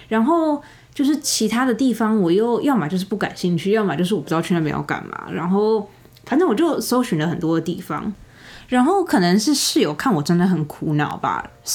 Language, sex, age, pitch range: Chinese, female, 20-39, 165-210 Hz